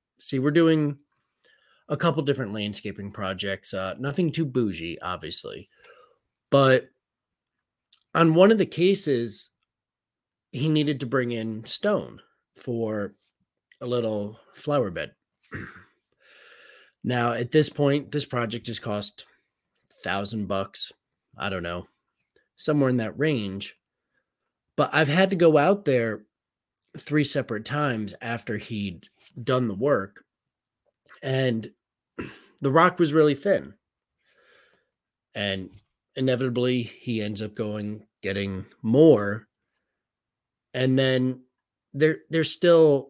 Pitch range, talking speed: 105-150 Hz, 115 wpm